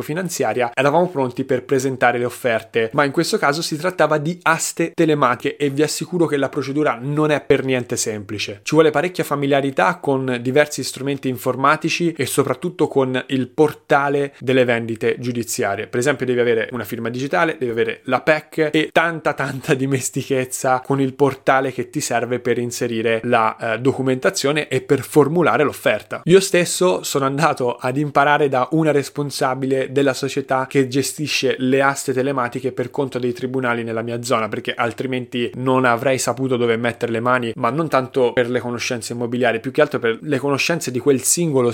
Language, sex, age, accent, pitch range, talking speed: Italian, male, 20-39, native, 120-145 Hz, 175 wpm